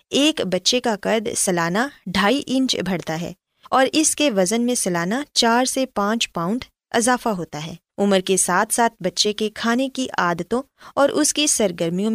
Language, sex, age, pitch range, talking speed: Urdu, female, 20-39, 185-260 Hz, 175 wpm